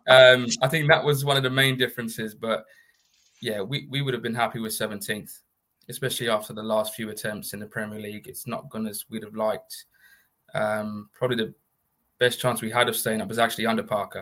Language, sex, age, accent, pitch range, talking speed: English, male, 20-39, British, 110-120 Hz, 215 wpm